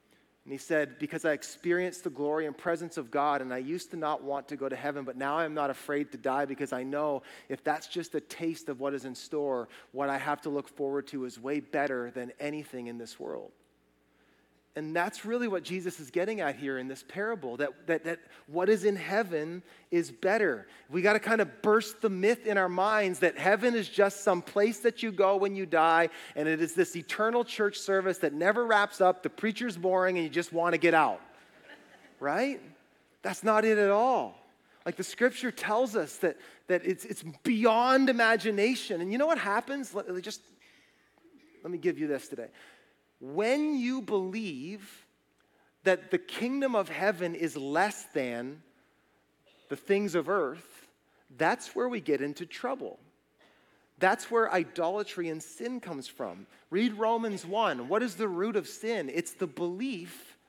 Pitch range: 150-210 Hz